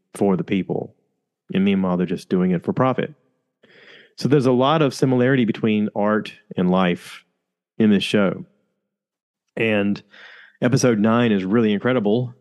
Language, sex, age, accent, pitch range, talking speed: English, male, 30-49, American, 85-115 Hz, 145 wpm